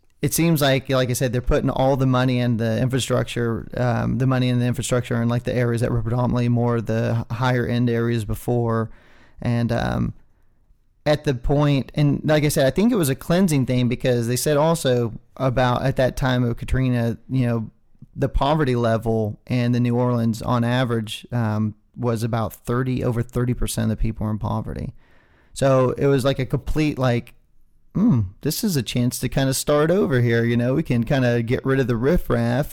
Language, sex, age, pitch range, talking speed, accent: English, male, 30-49, 120-140 Hz, 205 wpm, American